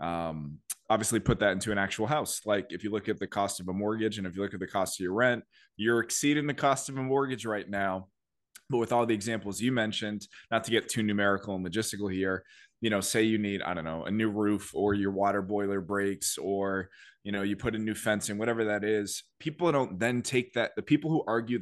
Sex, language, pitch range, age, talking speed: male, English, 100-120 Hz, 20-39, 245 wpm